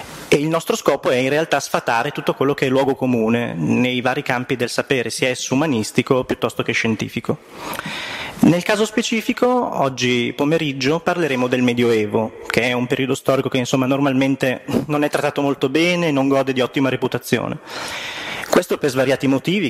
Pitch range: 125-145 Hz